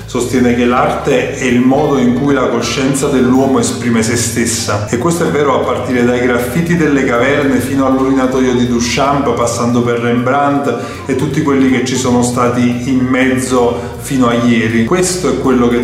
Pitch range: 120-135 Hz